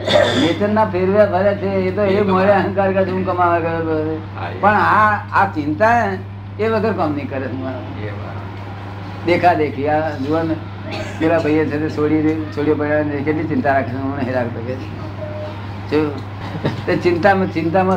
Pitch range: 100-165 Hz